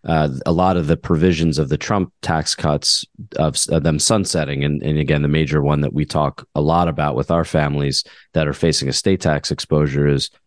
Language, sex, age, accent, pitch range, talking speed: English, male, 30-49, American, 75-90 Hz, 210 wpm